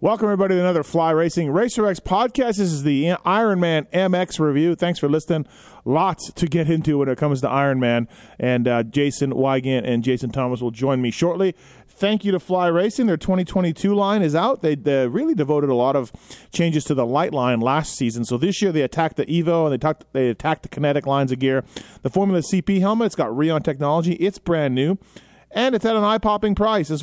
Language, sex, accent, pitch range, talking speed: English, male, American, 135-175 Hz, 215 wpm